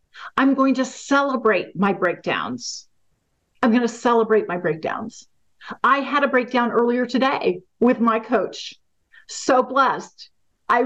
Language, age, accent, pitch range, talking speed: English, 50-69, American, 225-280 Hz, 135 wpm